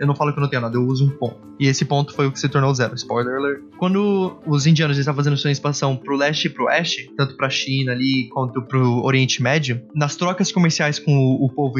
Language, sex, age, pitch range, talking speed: Portuguese, male, 20-39, 130-155 Hz, 250 wpm